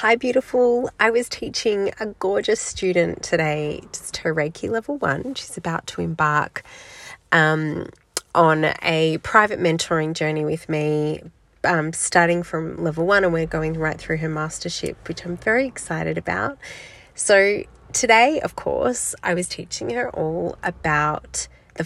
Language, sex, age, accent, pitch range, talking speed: English, female, 30-49, Australian, 155-190 Hz, 150 wpm